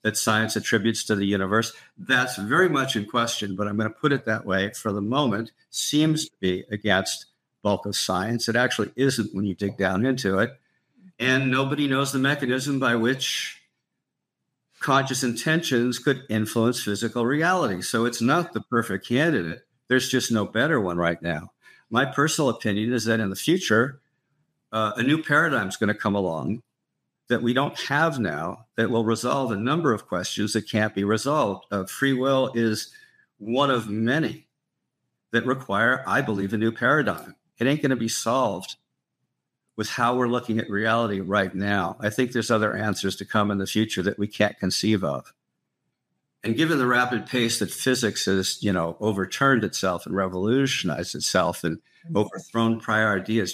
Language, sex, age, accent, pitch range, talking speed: English, male, 50-69, American, 105-130 Hz, 175 wpm